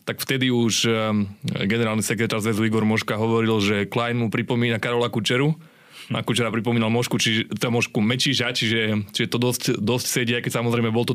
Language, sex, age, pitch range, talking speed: Slovak, male, 20-39, 115-135 Hz, 165 wpm